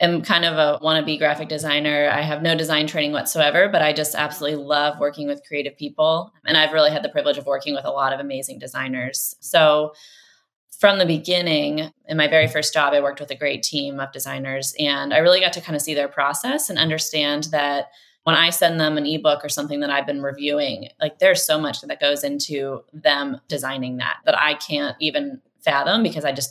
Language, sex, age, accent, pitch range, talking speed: English, female, 20-39, American, 145-165 Hz, 215 wpm